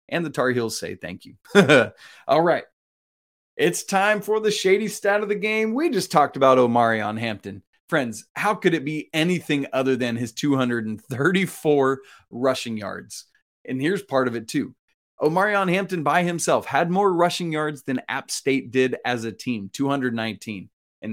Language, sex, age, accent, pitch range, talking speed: English, male, 30-49, American, 120-170 Hz, 175 wpm